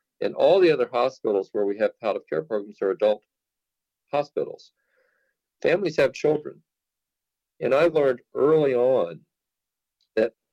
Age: 50-69